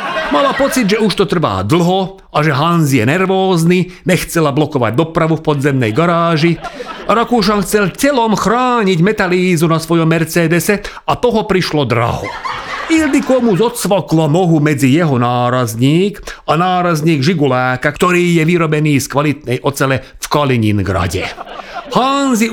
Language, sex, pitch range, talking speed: Slovak, male, 130-190 Hz, 130 wpm